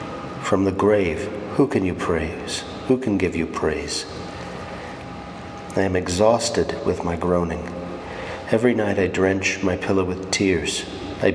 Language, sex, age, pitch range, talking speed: English, male, 50-69, 90-105 Hz, 145 wpm